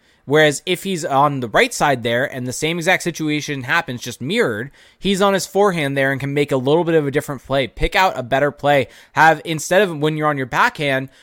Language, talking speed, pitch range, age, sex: English, 235 wpm, 130-170 Hz, 20-39, male